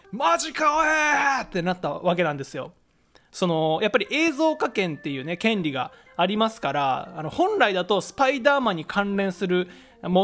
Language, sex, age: Japanese, male, 20-39